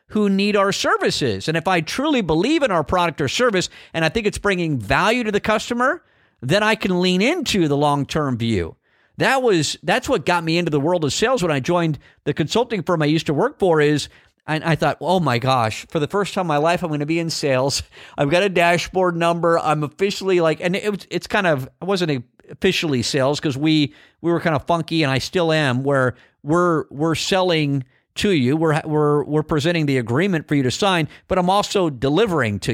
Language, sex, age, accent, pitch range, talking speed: English, male, 50-69, American, 150-190 Hz, 220 wpm